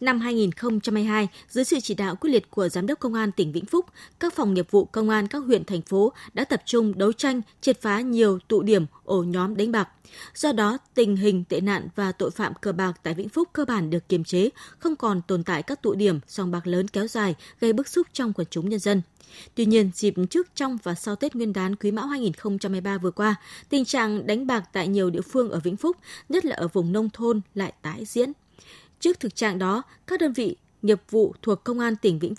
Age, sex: 20-39, female